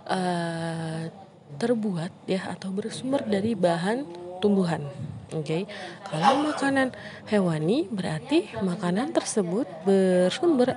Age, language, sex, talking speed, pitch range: 20-39, Indonesian, female, 100 wpm, 175-225 Hz